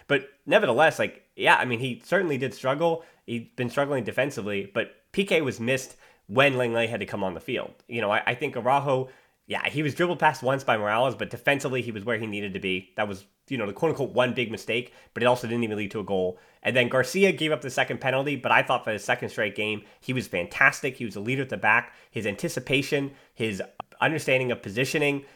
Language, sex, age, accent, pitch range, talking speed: English, male, 30-49, American, 115-145 Hz, 235 wpm